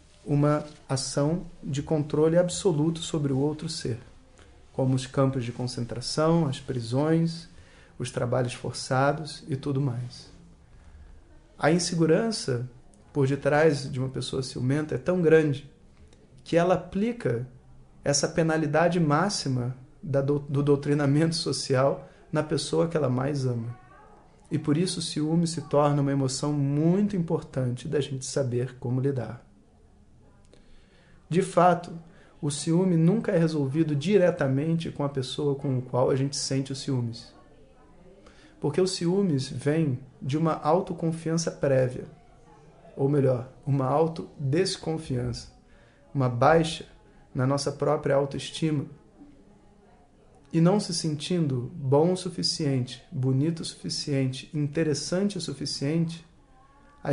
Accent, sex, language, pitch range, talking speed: Brazilian, male, Portuguese, 135-165 Hz, 120 wpm